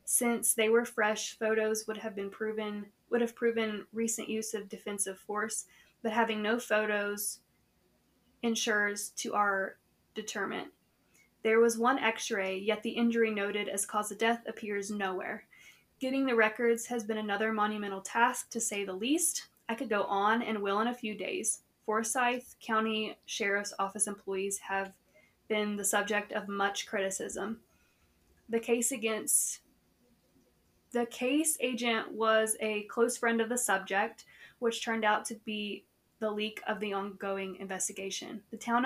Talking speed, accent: 155 wpm, American